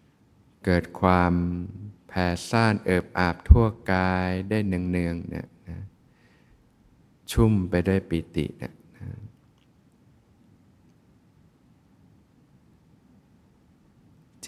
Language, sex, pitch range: Thai, male, 85-100 Hz